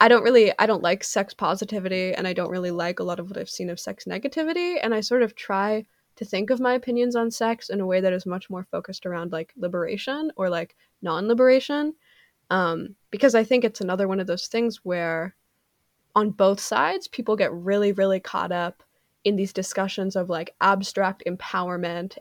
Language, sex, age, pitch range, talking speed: English, female, 20-39, 185-225 Hz, 205 wpm